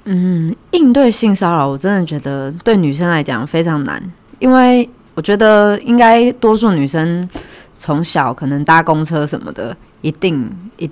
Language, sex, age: Chinese, female, 20-39